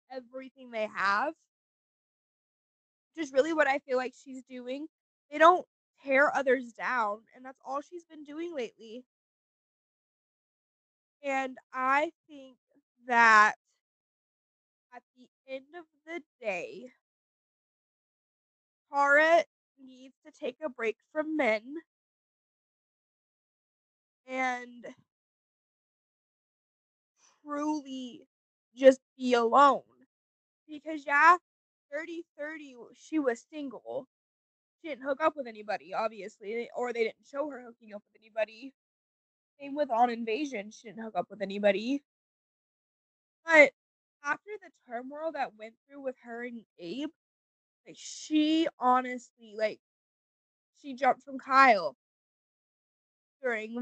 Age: 20-39